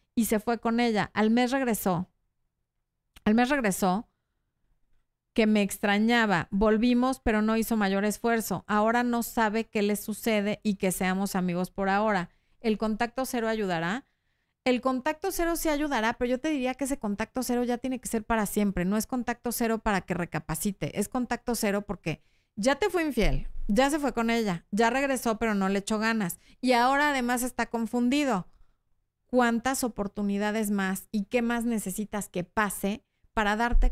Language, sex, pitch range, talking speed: Spanish, female, 210-260 Hz, 175 wpm